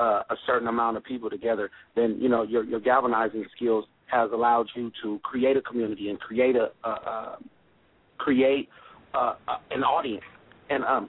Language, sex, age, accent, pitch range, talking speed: English, male, 40-59, American, 120-140 Hz, 175 wpm